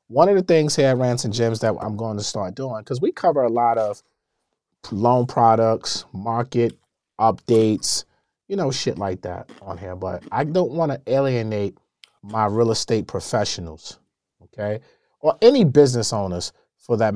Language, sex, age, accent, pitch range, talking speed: English, male, 30-49, American, 100-125 Hz, 170 wpm